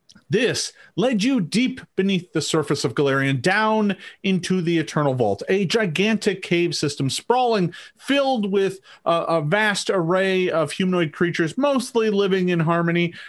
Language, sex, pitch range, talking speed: English, male, 145-190 Hz, 145 wpm